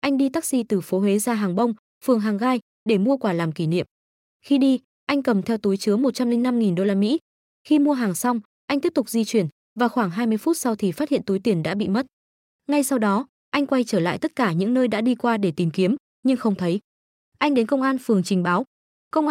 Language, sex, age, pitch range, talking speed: Vietnamese, female, 20-39, 200-260 Hz, 245 wpm